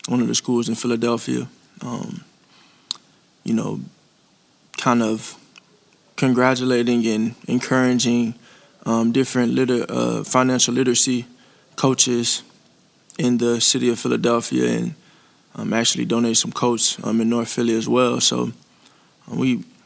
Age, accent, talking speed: 20-39, American, 120 wpm